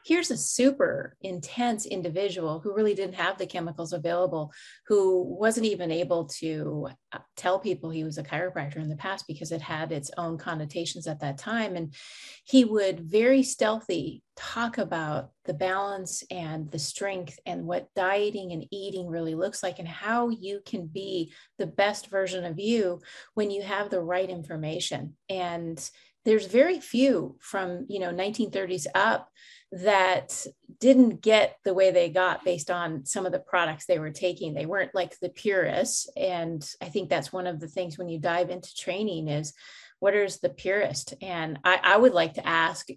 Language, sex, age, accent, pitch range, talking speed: English, female, 30-49, American, 165-205 Hz, 175 wpm